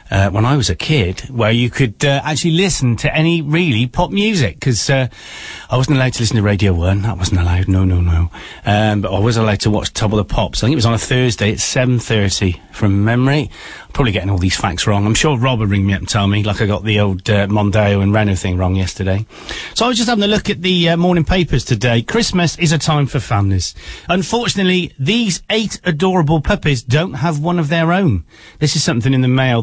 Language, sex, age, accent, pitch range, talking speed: English, male, 40-59, British, 105-165 Hz, 245 wpm